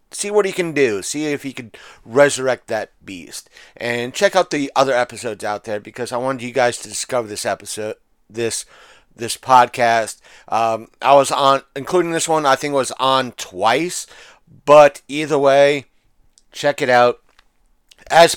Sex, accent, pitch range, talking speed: male, American, 120-145 Hz, 170 wpm